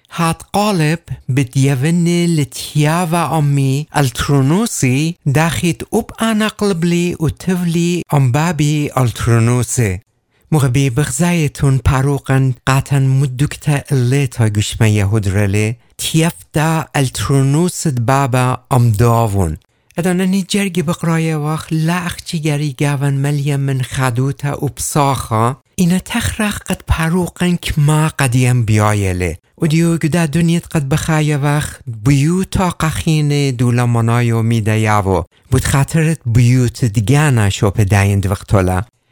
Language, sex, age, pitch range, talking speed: English, male, 60-79, 120-160 Hz, 95 wpm